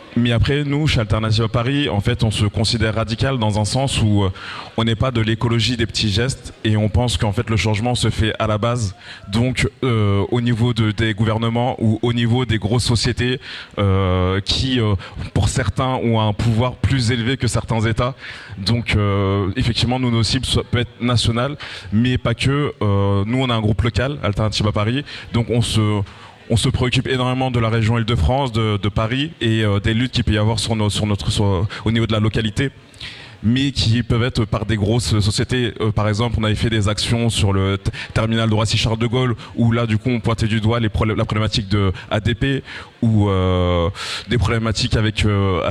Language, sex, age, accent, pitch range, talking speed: French, male, 20-39, French, 105-120 Hz, 210 wpm